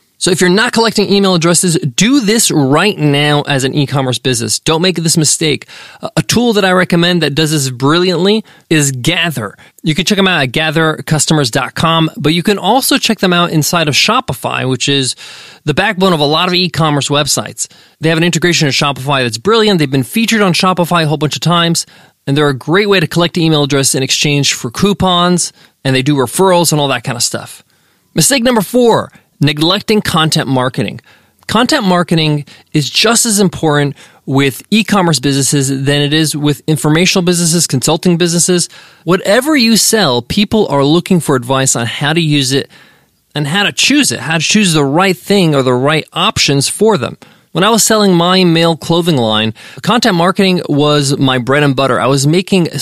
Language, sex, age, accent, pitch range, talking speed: English, male, 20-39, American, 140-185 Hz, 195 wpm